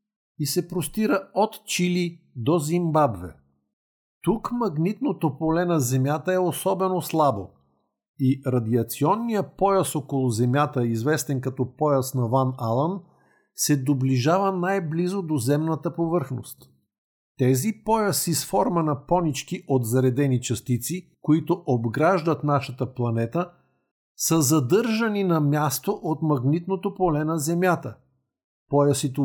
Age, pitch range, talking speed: 50-69, 135-180 Hz, 115 wpm